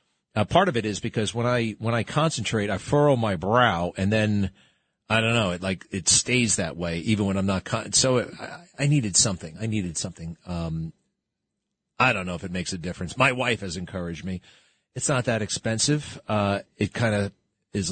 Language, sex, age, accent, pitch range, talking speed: English, male, 40-59, American, 100-140 Hz, 210 wpm